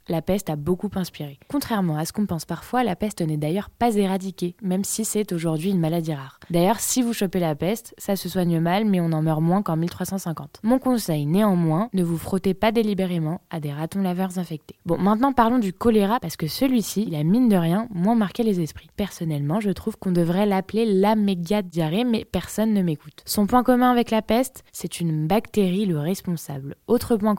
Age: 20-39